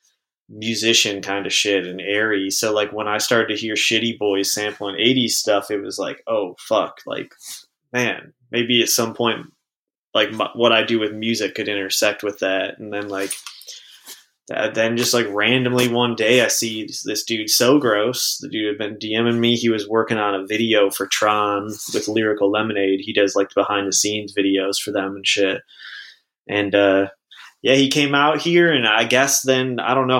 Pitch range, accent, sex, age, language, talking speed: 105-120 Hz, American, male, 20-39, English, 190 wpm